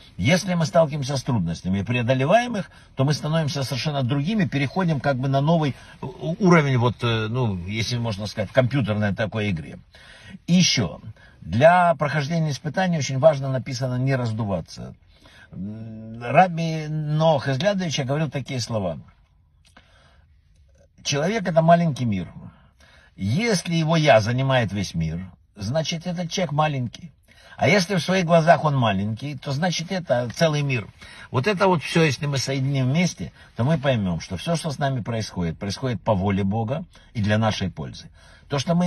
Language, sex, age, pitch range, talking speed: Russian, male, 60-79, 110-165 Hz, 155 wpm